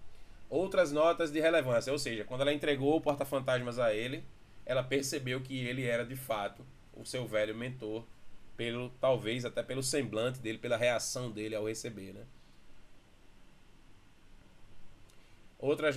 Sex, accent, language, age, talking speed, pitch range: male, Brazilian, Portuguese, 20-39, 140 wpm, 105-150 Hz